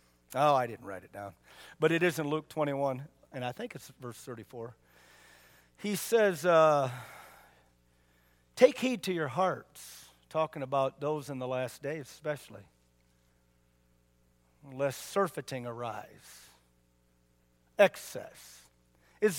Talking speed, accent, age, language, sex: 120 wpm, American, 50-69, English, male